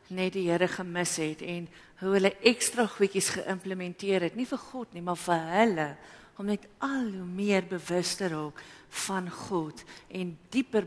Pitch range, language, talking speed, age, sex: 170-205 Hz, English, 165 wpm, 50-69, female